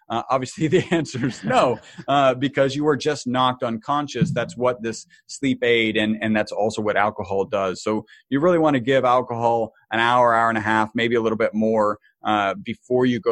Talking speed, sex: 210 wpm, male